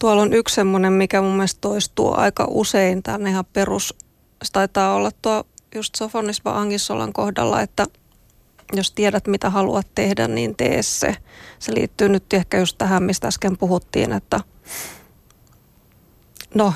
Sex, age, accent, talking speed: female, 20-39, native, 145 wpm